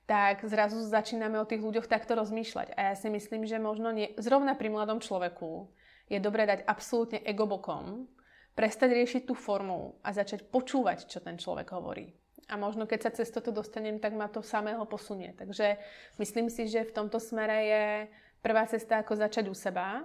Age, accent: 30-49, native